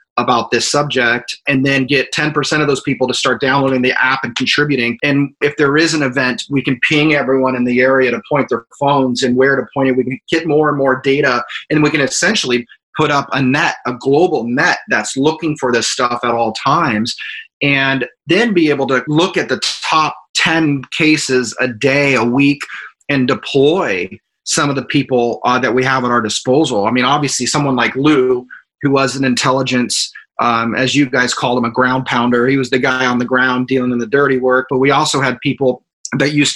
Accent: American